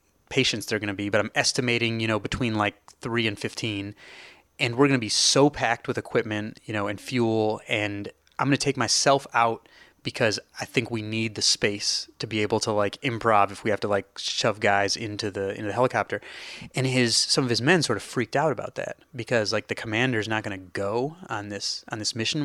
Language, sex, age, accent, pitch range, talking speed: English, male, 30-49, American, 100-130 Hz, 225 wpm